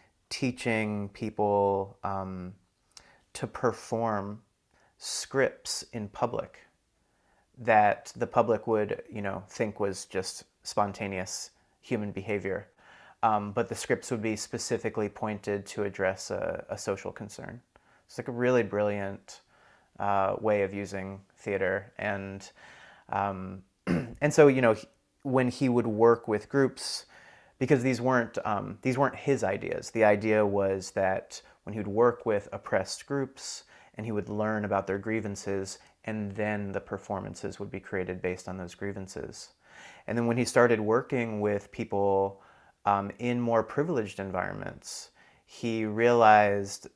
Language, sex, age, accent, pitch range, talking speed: English, male, 30-49, American, 100-115 Hz, 135 wpm